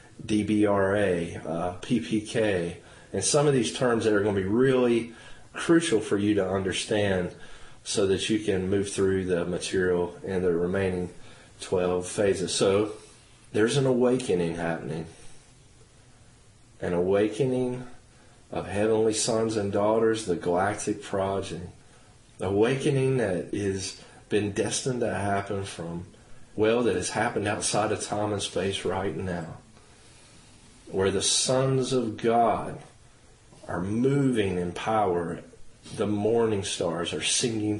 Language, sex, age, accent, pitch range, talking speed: English, male, 40-59, American, 95-120 Hz, 125 wpm